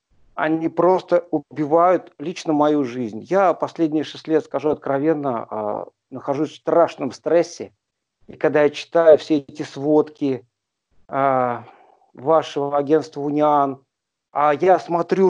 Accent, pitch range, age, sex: native, 140-170 Hz, 50-69, male